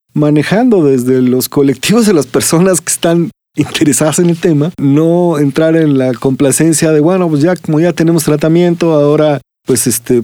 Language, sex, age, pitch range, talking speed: Spanish, male, 40-59, 135-160 Hz, 170 wpm